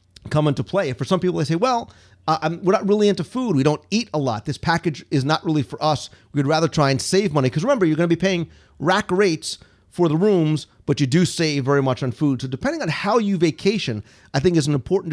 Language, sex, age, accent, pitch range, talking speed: English, male, 40-59, American, 130-170 Hz, 255 wpm